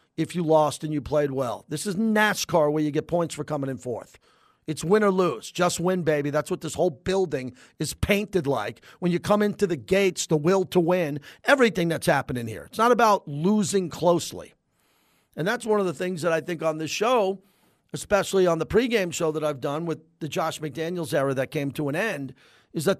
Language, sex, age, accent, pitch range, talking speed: English, male, 50-69, American, 155-215 Hz, 220 wpm